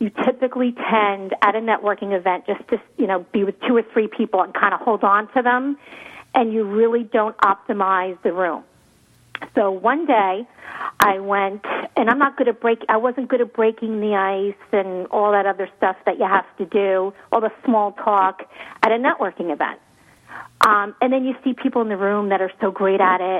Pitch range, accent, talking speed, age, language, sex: 190-235 Hz, American, 210 wpm, 40-59, English, female